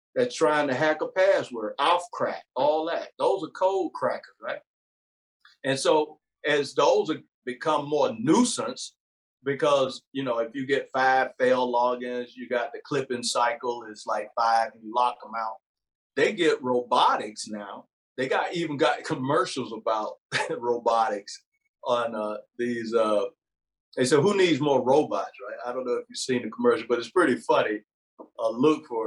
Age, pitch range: 50-69, 120-145 Hz